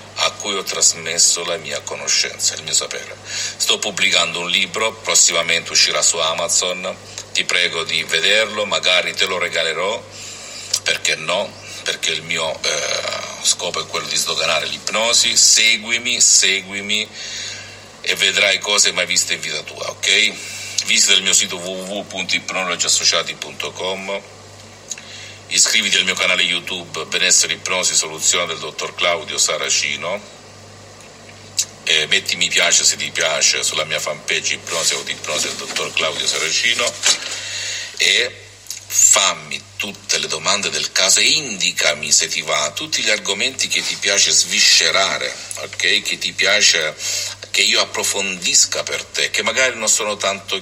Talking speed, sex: 140 wpm, male